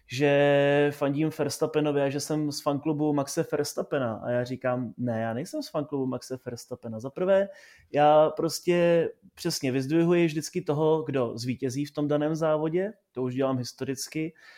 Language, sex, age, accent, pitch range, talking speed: Czech, male, 20-39, native, 135-155 Hz, 150 wpm